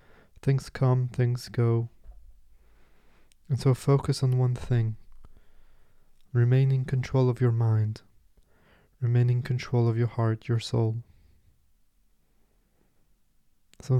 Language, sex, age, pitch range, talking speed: English, male, 20-39, 100-125 Hz, 105 wpm